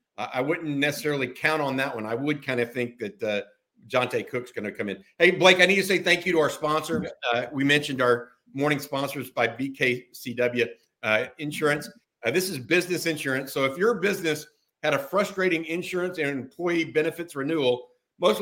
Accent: American